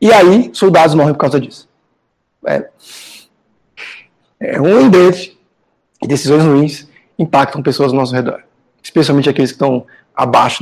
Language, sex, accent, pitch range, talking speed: Portuguese, male, Brazilian, 135-170 Hz, 135 wpm